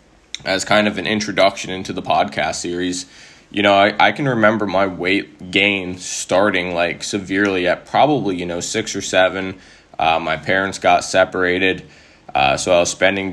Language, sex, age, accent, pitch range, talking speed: English, male, 10-29, American, 85-95 Hz, 170 wpm